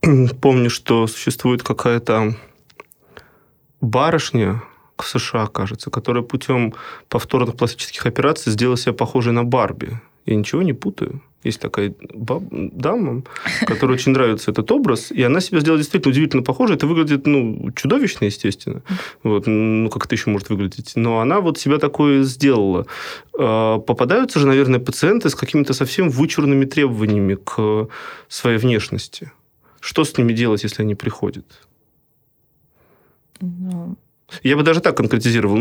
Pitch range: 110-145 Hz